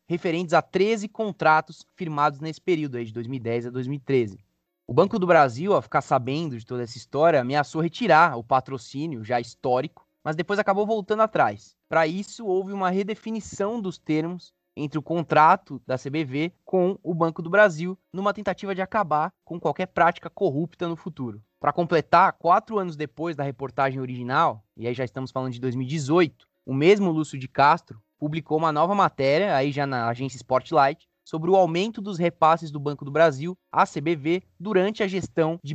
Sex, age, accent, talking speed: male, 20-39, Brazilian, 175 wpm